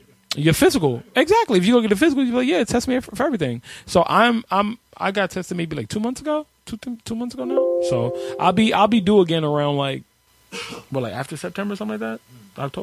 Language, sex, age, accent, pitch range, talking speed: English, male, 20-39, American, 130-215 Hz, 240 wpm